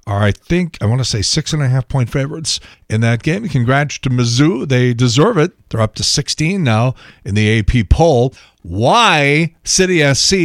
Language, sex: English, male